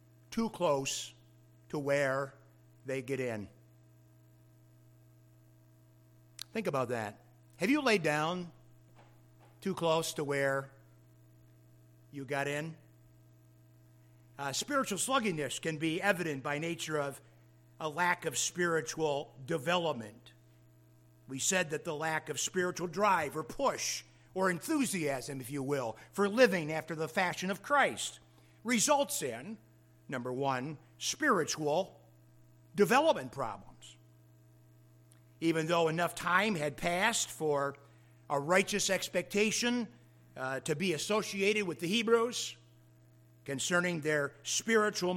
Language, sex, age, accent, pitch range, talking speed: English, male, 50-69, American, 115-175 Hz, 110 wpm